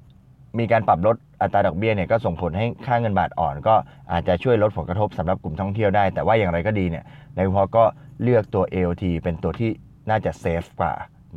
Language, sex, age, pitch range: Thai, male, 20-39, 90-110 Hz